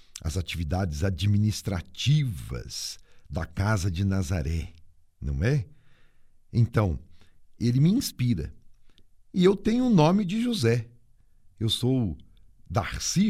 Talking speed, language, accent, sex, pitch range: 110 wpm, Portuguese, Brazilian, male, 90-145 Hz